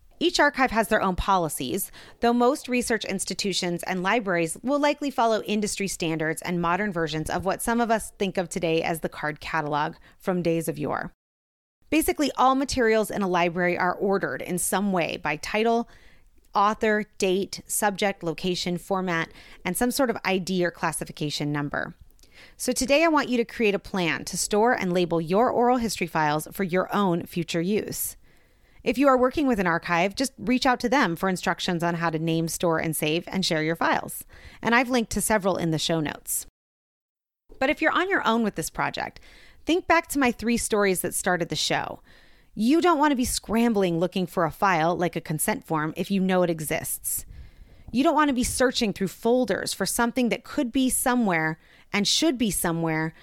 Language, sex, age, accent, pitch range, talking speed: English, female, 30-49, American, 170-235 Hz, 195 wpm